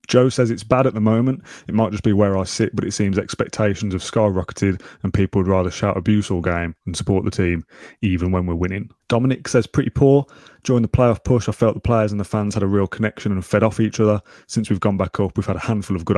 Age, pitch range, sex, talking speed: 20-39, 95-115 Hz, male, 265 wpm